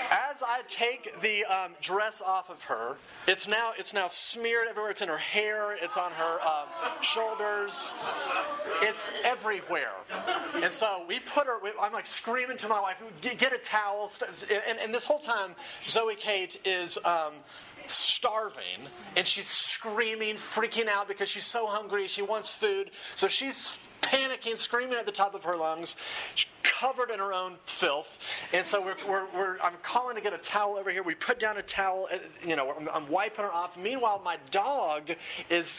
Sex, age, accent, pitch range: male, 30-49, American, 185-240 Hz